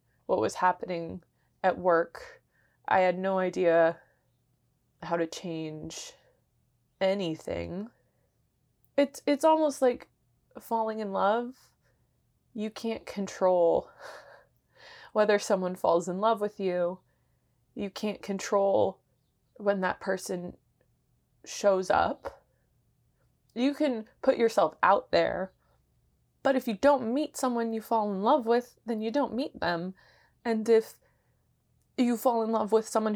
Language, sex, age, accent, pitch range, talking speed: English, female, 20-39, American, 175-225 Hz, 125 wpm